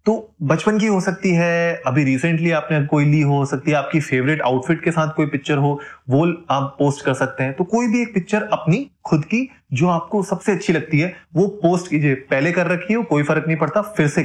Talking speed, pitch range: 230 wpm, 135-180 Hz